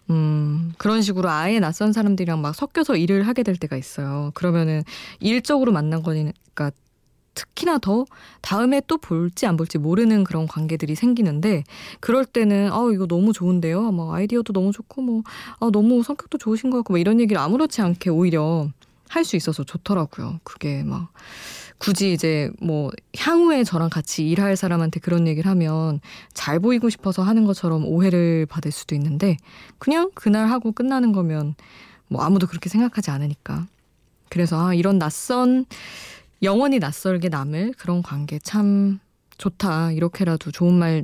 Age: 20-39